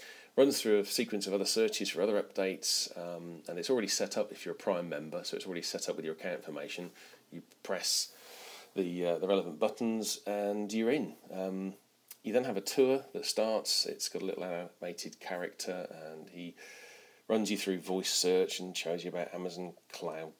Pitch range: 85-105 Hz